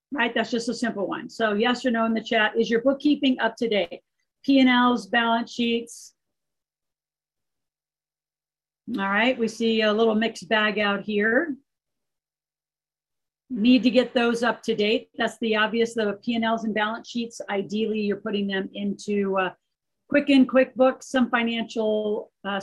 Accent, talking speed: American, 155 wpm